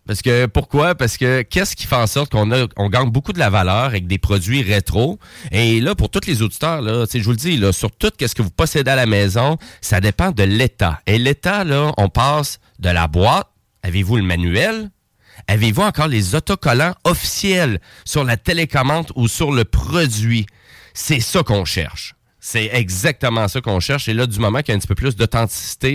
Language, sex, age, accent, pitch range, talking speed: French, male, 30-49, Canadian, 105-135 Hz, 210 wpm